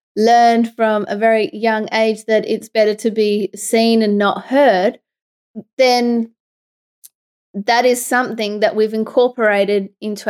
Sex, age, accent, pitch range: female, 20-39, Australian, 200-235 Hz